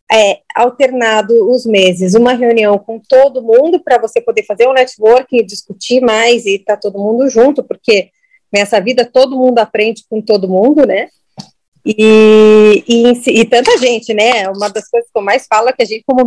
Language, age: Portuguese, 30-49